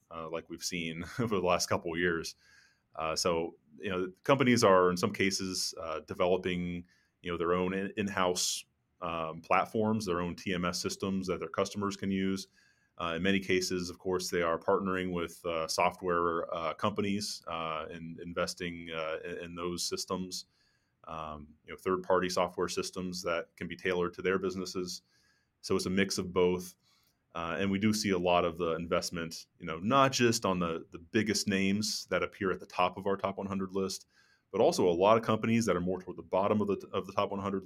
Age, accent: 30-49, American